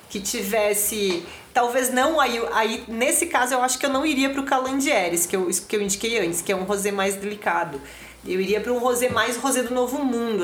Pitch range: 200-240 Hz